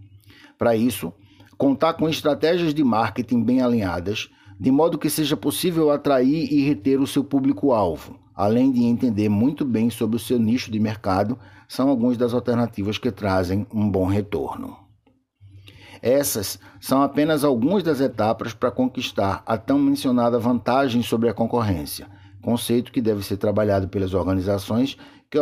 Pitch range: 100-145 Hz